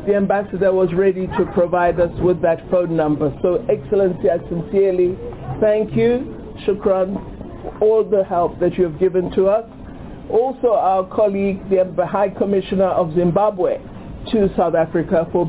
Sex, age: male, 60-79